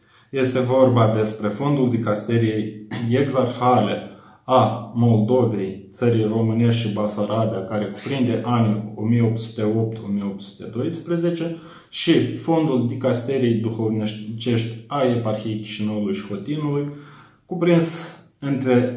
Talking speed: 85 wpm